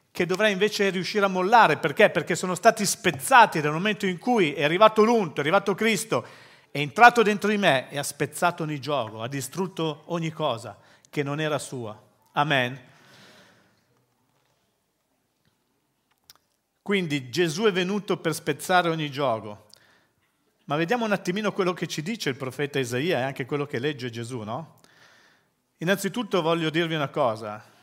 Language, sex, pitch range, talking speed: Italian, male, 130-180 Hz, 155 wpm